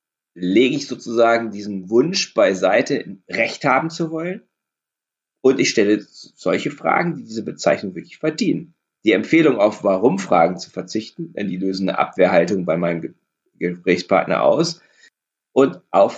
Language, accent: German, German